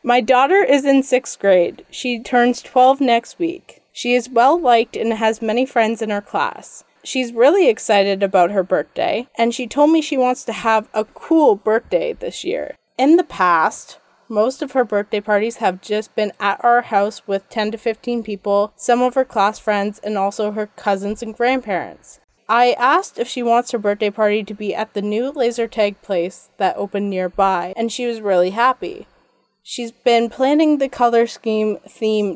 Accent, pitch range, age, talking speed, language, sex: American, 205-245 Hz, 20-39, 185 wpm, English, female